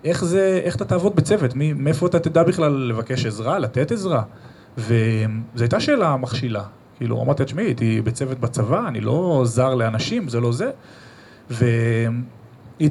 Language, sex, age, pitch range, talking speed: Hebrew, male, 30-49, 120-155 Hz, 150 wpm